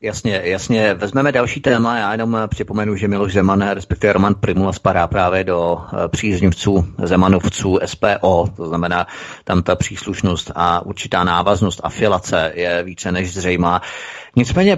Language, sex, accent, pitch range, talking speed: Czech, male, native, 100-120 Hz, 140 wpm